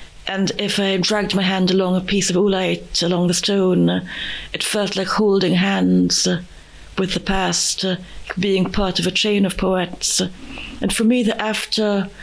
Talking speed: 165 wpm